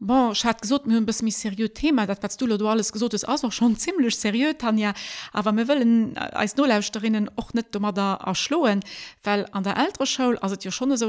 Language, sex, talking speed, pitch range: French, female, 235 wpm, 180-225 Hz